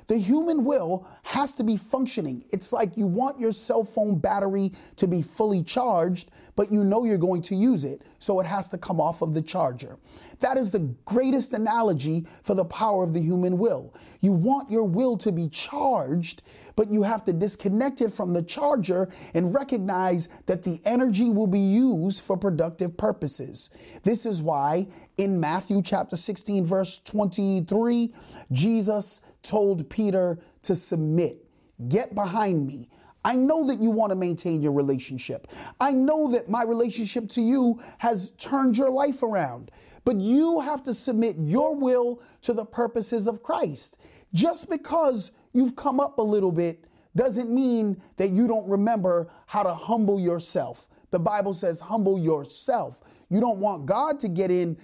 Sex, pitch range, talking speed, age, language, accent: male, 180-235 Hz, 170 wpm, 30-49, English, American